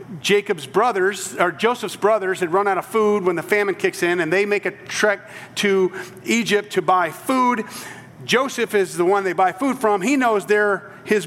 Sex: male